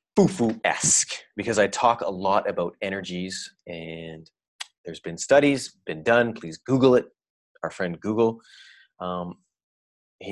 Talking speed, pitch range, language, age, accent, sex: 135 wpm, 85-115 Hz, English, 30-49, American, male